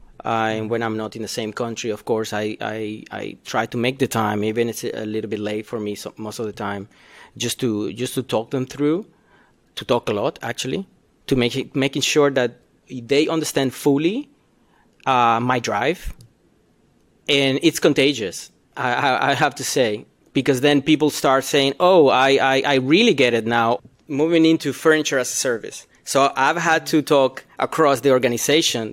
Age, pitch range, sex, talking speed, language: 30-49, 120-150 Hz, male, 195 wpm, English